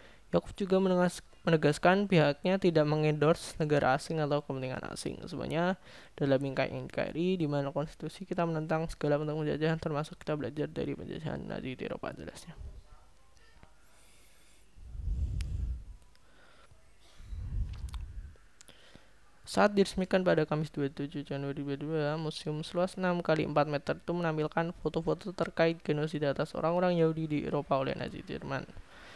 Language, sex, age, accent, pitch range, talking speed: Indonesian, male, 20-39, native, 145-175 Hz, 120 wpm